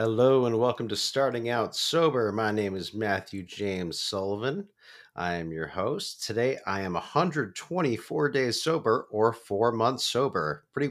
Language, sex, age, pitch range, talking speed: English, male, 30-49, 90-115 Hz, 155 wpm